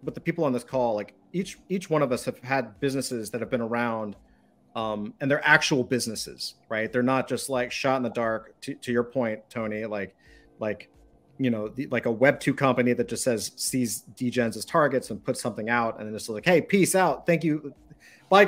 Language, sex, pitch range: English, male, 110-130 Hz